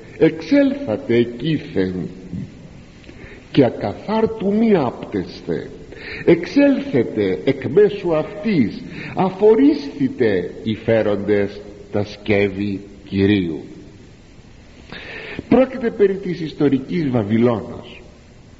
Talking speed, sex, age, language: 70 wpm, male, 50-69, Greek